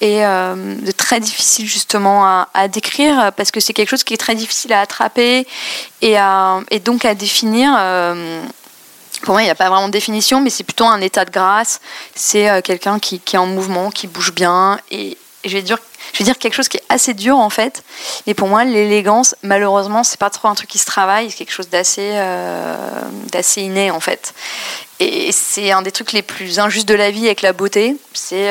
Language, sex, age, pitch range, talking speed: French, female, 20-39, 185-225 Hz, 225 wpm